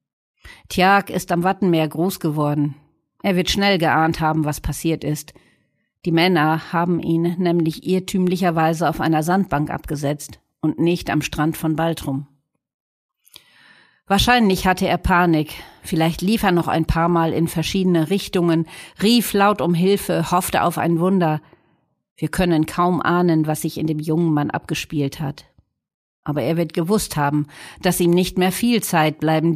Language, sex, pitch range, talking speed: German, female, 155-185 Hz, 155 wpm